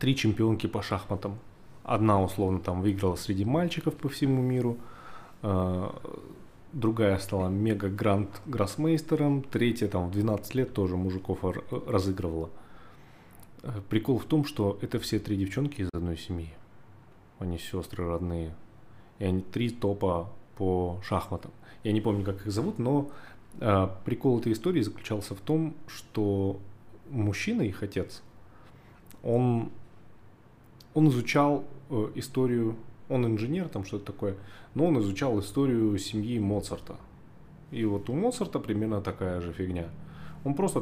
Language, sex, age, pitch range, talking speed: Russian, male, 20-39, 95-125 Hz, 130 wpm